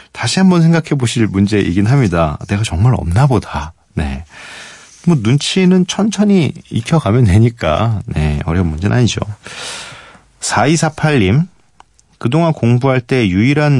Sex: male